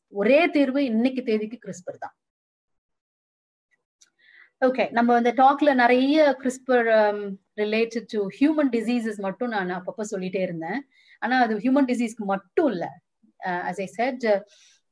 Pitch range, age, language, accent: 195-250 Hz, 30-49, Tamil, native